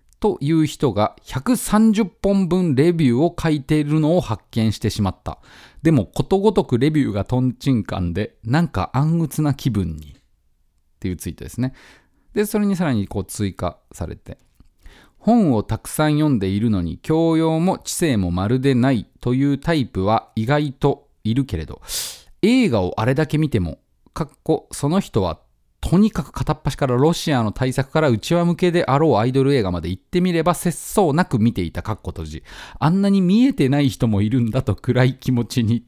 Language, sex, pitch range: Japanese, male, 110-170 Hz